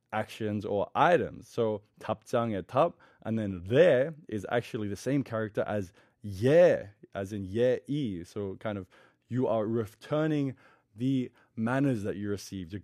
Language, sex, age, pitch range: Korean, male, 20-39, 110-150 Hz